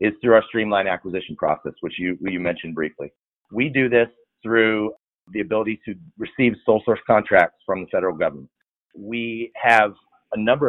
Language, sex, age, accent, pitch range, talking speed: English, male, 30-49, American, 95-110 Hz, 170 wpm